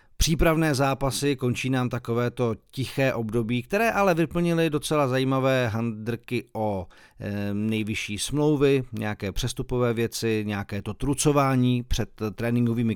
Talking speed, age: 110 wpm, 40-59